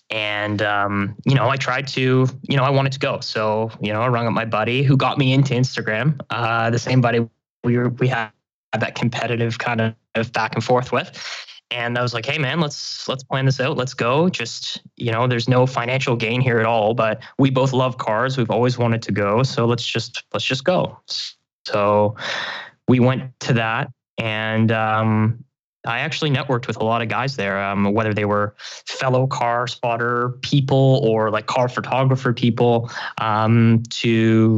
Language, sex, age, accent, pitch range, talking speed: English, male, 10-29, American, 110-130 Hz, 195 wpm